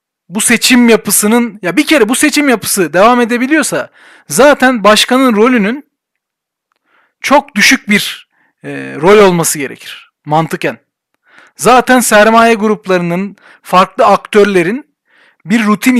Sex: male